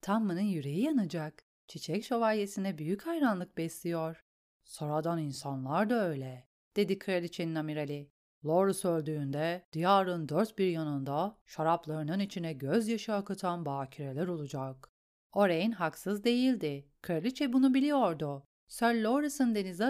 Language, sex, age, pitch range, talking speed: Turkish, female, 40-59, 160-240 Hz, 110 wpm